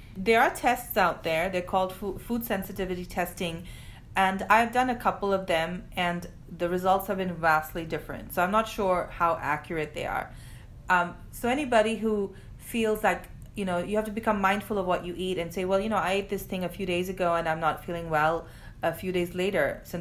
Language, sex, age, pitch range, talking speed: English, female, 30-49, 160-190 Hz, 215 wpm